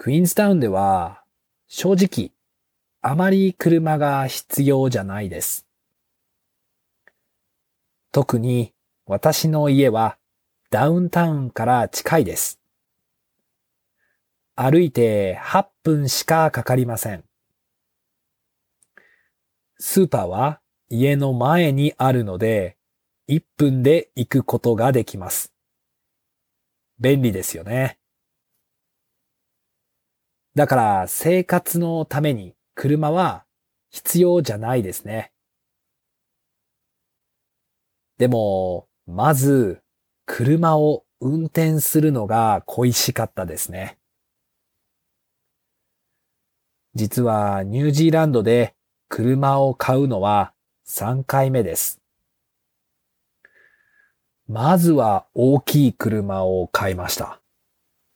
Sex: male